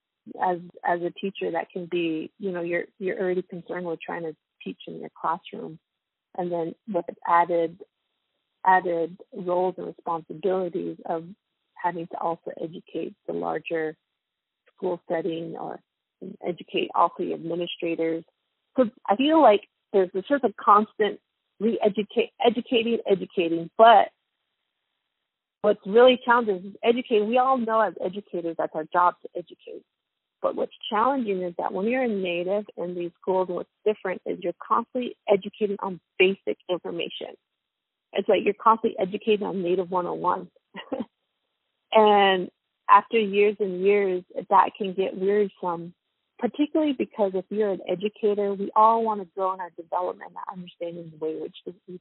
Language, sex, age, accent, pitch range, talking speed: English, female, 30-49, American, 175-215 Hz, 150 wpm